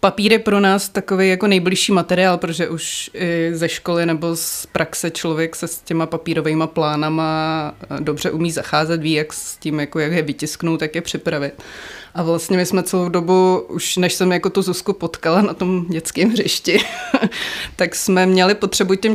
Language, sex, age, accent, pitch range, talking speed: Czech, female, 20-39, native, 165-185 Hz, 180 wpm